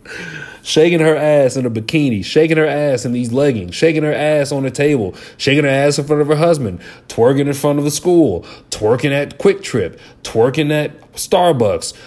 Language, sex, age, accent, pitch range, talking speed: English, male, 30-49, American, 115-155 Hz, 195 wpm